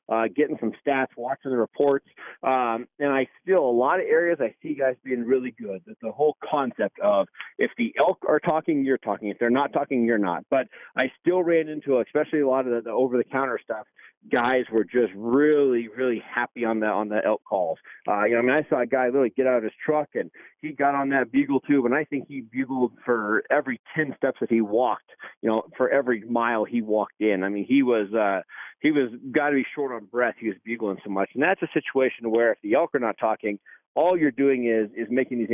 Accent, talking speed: American, 240 wpm